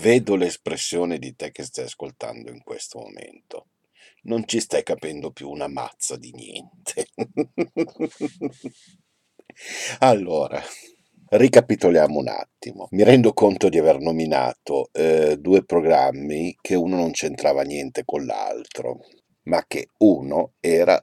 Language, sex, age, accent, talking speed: Italian, male, 50-69, native, 125 wpm